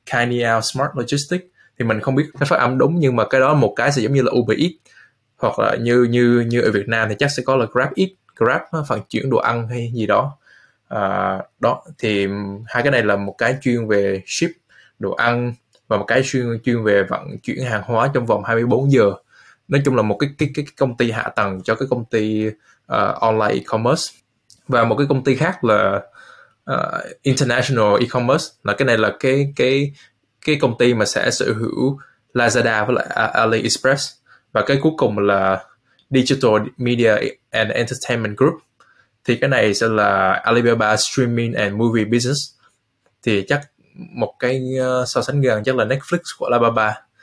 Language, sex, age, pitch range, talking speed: Vietnamese, male, 20-39, 115-135 Hz, 195 wpm